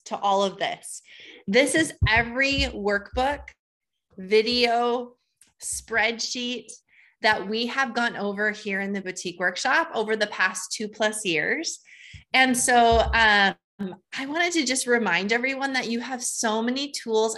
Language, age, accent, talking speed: English, 20-39, American, 140 wpm